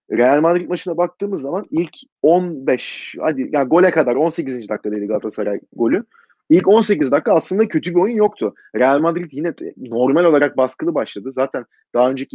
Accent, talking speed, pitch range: native, 160 wpm, 135-185 Hz